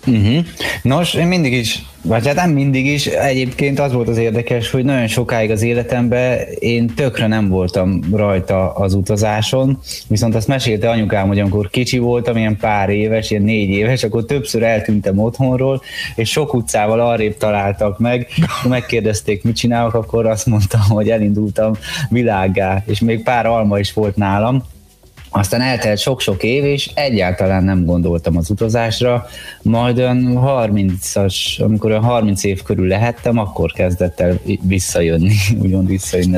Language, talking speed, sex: Hungarian, 150 wpm, male